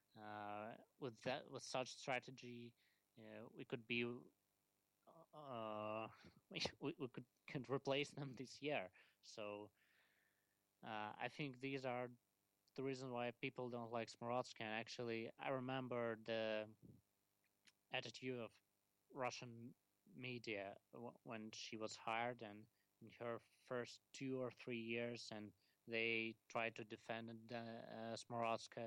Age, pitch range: 20-39, 105-125 Hz